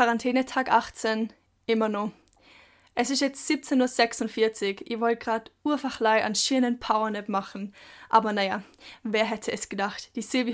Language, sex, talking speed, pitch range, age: German, female, 150 wpm, 220-260 Hz, 10-29